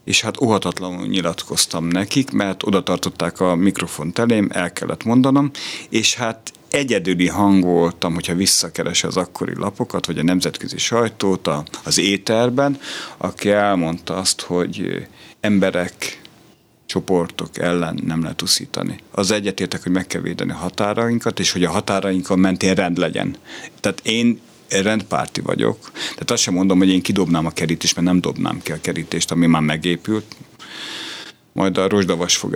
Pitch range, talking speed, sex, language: 90-110 Hz, 145 wpm, male, Hungarian